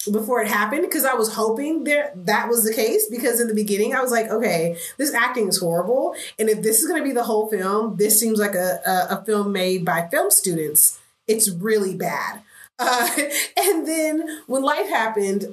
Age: 30-49